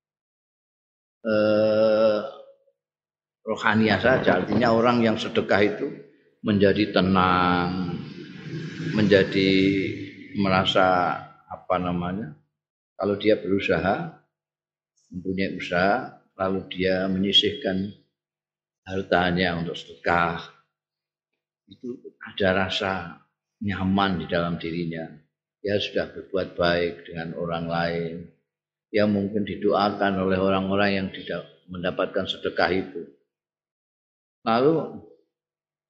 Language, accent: Indonesian, native